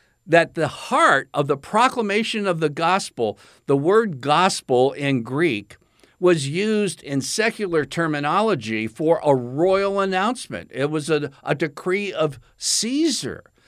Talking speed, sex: 130 wpm, male